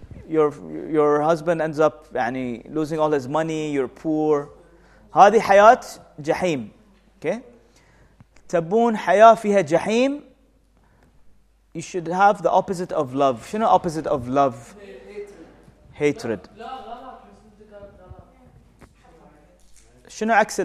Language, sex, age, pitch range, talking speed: English, male, 30-49, 155-225 Hz, 90 wpm